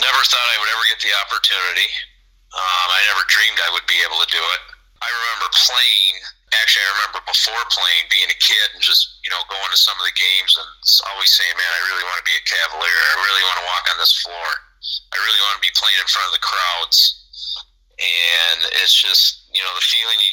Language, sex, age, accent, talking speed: English, male, 40-59, American, 230 wpm